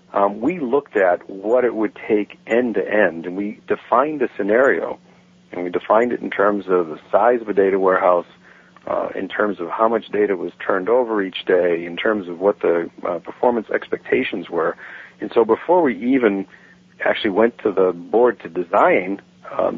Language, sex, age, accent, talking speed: English, male, 50-69, American, 185 wpm